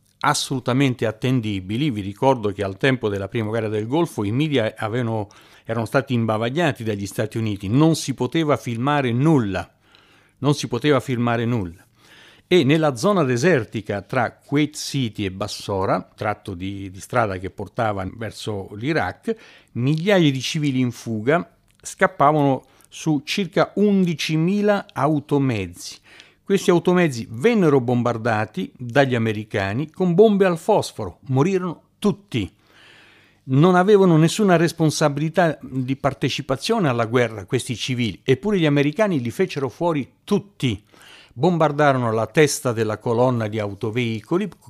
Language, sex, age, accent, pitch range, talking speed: Italian, male, 50-69, native, 110-155 Hz, 125 wpm